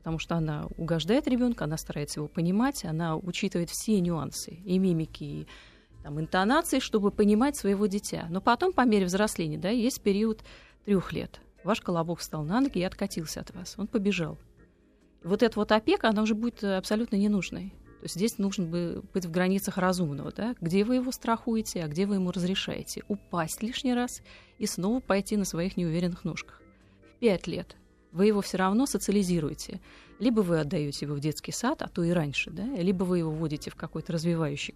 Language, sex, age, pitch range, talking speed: Russian, female, 30-49, 165-215 Hz, 185 wpm